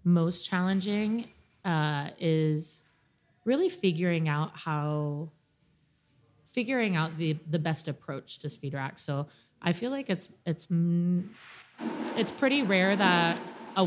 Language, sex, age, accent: English, female, 20-39, American